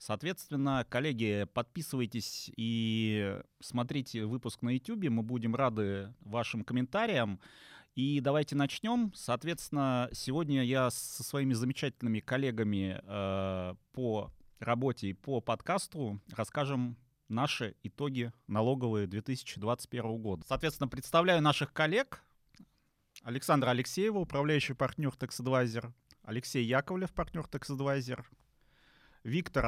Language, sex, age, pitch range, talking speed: Russian, male, 30-49, 110-140 Hz, 100 wpm